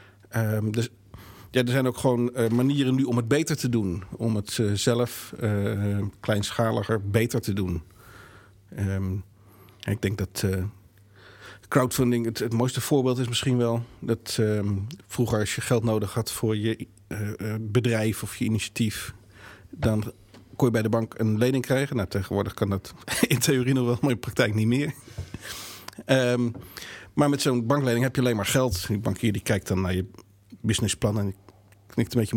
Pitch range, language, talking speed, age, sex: 100-120 Hz, Dutch, 180 wpm, 50-69, male